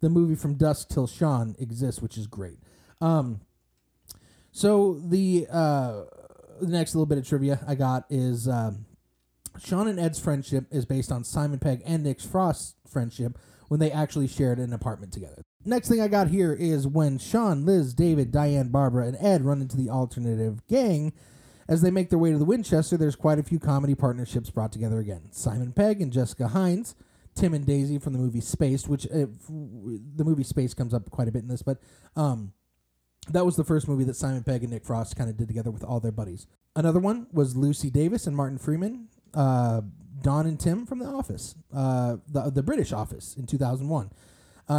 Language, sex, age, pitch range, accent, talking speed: English, male, 30-49, 120-160 Hz, American, 200 wpm